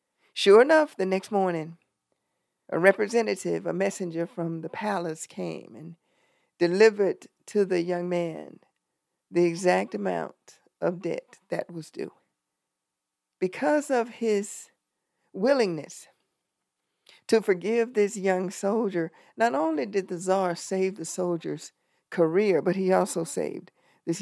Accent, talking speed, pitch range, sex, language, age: American, 125 wpm, 170-210 Hz, female, English, 50-69